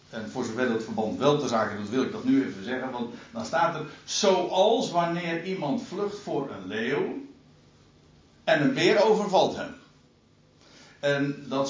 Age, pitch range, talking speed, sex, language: 60-79, 135-205 Hz, 170 wpm, male, Dutch